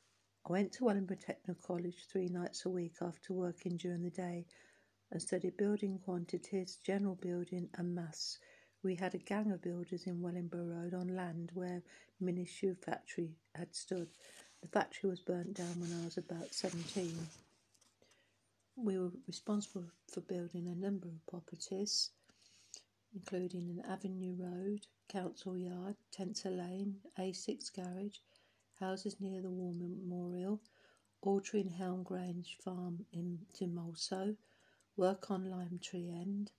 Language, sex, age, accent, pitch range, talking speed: English, female, 60-79, British, 175-195 Hz, 140 wpm